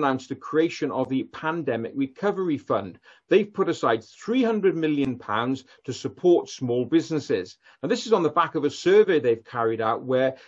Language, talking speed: English, 180 wpm